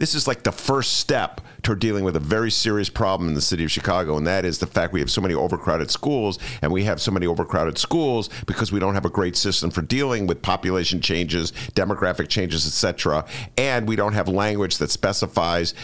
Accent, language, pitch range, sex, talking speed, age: American, English, 100-135 Hz, male, 225 wpm, 50-69